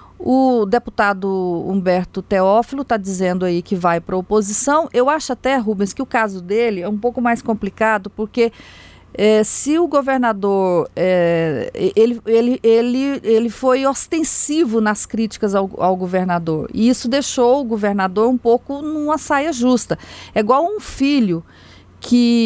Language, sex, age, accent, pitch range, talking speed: Portuguese, female, 40-59, Brazilian, 195-250 Hz, 140 wpm